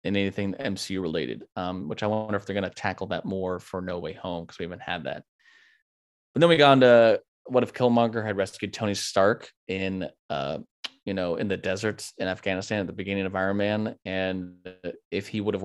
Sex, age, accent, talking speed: male, 20-39, American, 215 wpm